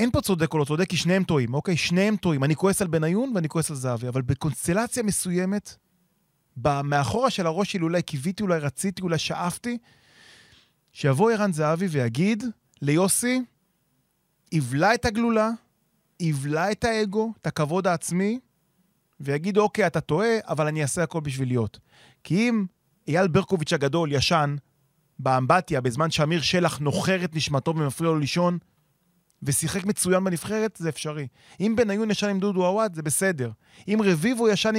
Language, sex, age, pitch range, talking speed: Hebrew, male, 30-49, 155-210 Hz, 150 wpm